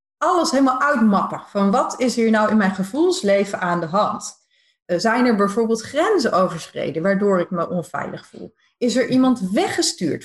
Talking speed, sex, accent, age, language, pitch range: 165 wpm, female, Dutch, 40-59, Dutch, 185-270 Hz